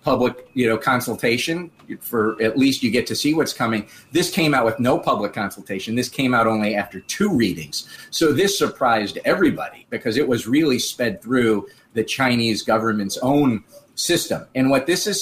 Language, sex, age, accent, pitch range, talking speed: English, male, 40-59, American, 115-150 Hz, 180 wpm